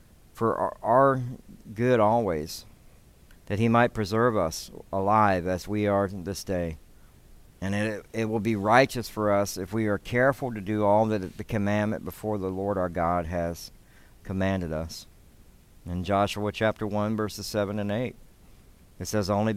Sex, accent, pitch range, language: male, American, 95-110 Hz, English